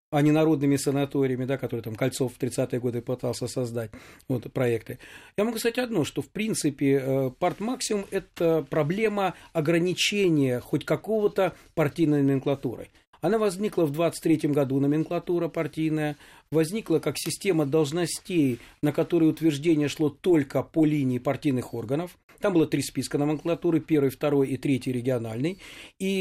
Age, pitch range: 40-59, 140-175 Hz